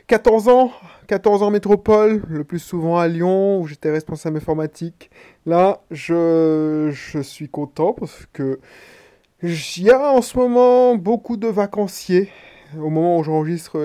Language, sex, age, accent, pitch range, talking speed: French, male, 20-39, French, 150-190 Hz, 145 wpm